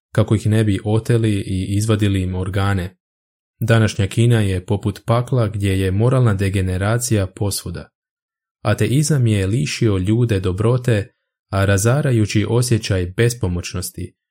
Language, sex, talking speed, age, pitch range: Croatian, male, 115 wpm, 20-39, 95-115 Hz